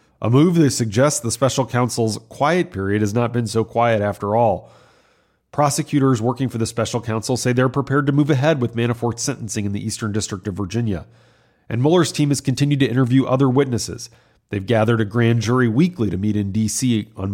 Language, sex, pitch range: English, male, 110-130 Hz